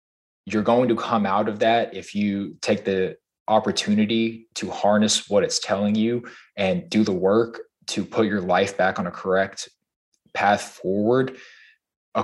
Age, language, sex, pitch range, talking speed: 20-39, English, male, 95-110 Hz, 160 wpm